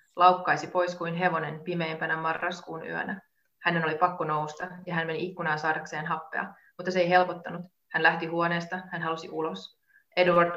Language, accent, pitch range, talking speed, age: Finnish, native, 165-180 Hz, 160 wpm, 30-49